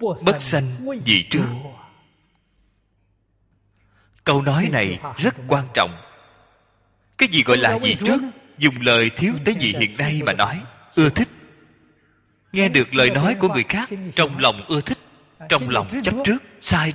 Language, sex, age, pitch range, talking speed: Vietnamese, male, 20-39, 100-155 Hz, 150 wpm